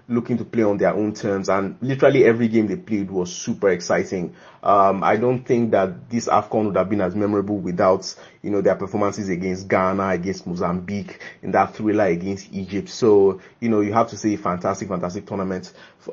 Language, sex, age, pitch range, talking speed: English, male, 30-49, 95-110 Hz, 195 wpm